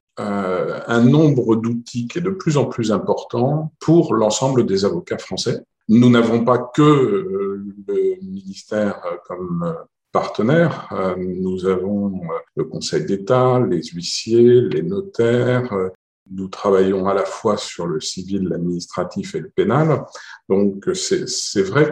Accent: French